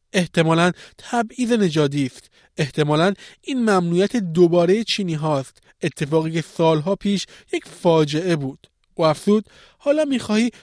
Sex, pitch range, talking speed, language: male, 165-220 Hz, 120 wpm, Persian